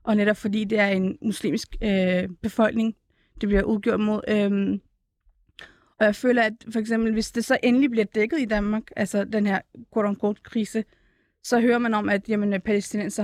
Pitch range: 205-230 Hz